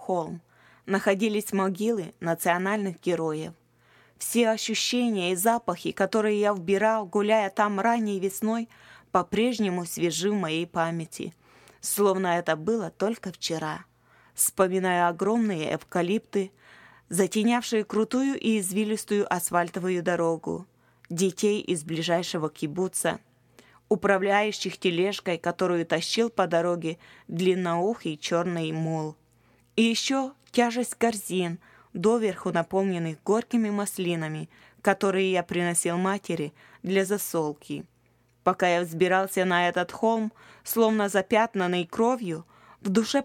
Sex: female